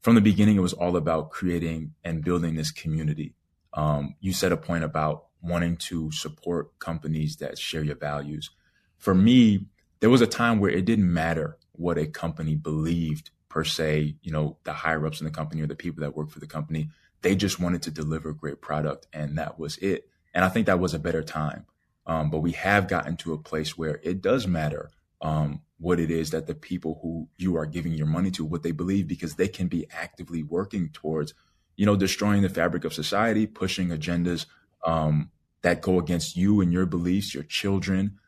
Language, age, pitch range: English, 20-39, 80-90 Hz